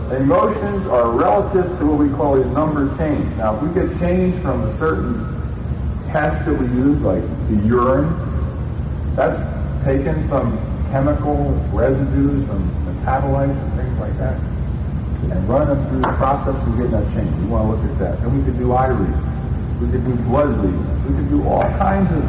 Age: 40-59